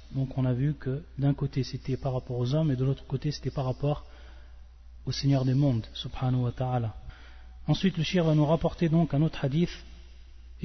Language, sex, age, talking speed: French, male, 30-49, 210 wpm